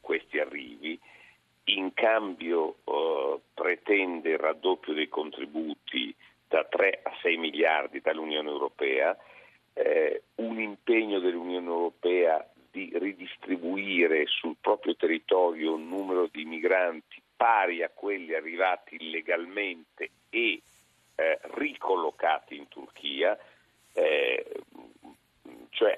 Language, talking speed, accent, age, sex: Italian, 100 wpm, native, 50-69, male